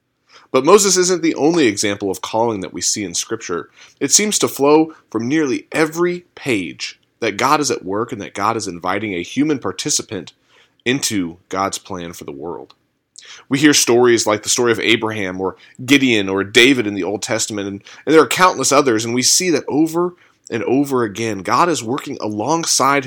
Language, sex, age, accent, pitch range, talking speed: English, male, 30-49, American, 105-145 Hz, 190 wpm